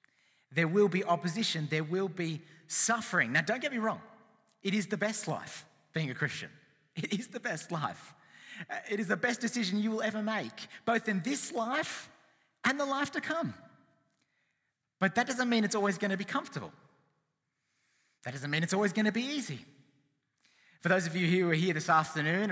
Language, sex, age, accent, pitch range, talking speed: English, male, 30-49, Australian, 140-205 Hz, 190 wpm